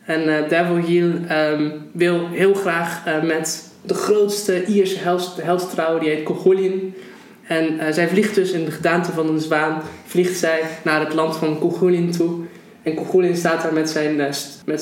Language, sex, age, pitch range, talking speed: Dutch, male, 20-39, 165-200 Hz, 180 wpm